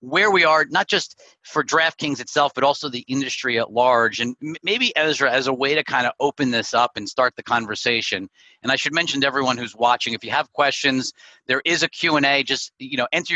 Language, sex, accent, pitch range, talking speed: English, male, American, 115-145 Hz, 235 wpm